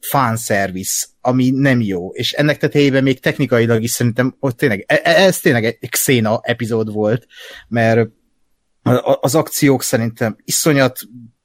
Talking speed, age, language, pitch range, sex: 125 wpm, 30-49, Hungarian, 115-145 Hz, male